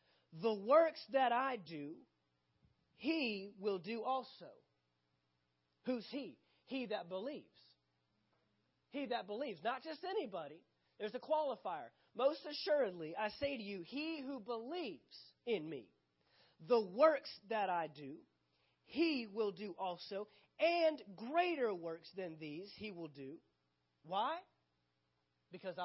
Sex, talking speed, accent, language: male, 125 wpm, American, English